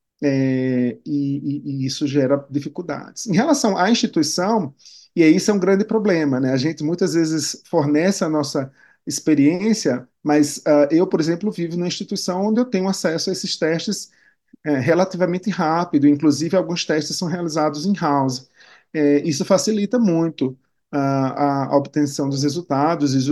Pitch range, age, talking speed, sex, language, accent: 140-160 Hz, 40-59, 155 wpm, male, English, Brazilian